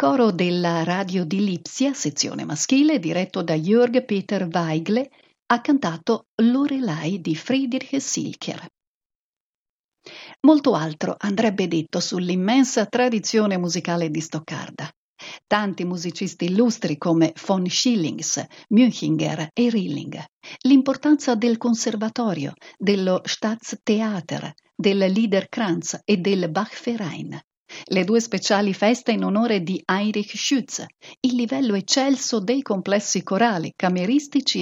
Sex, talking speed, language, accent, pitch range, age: female, 105 wpm, Italian, native, 175-240 Hz, 50-69